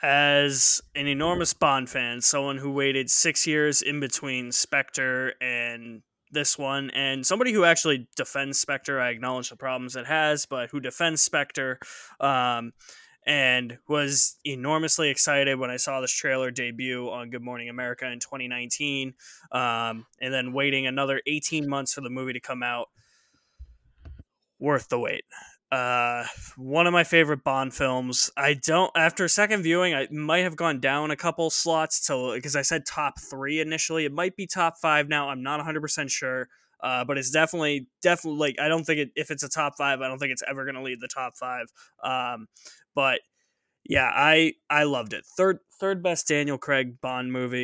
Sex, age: male, 20-39